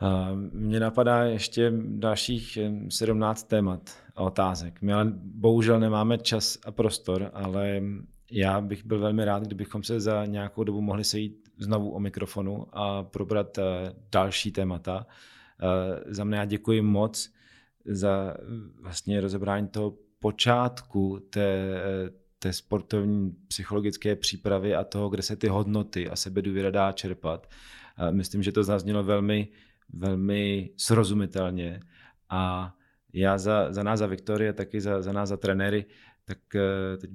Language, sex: Czech, male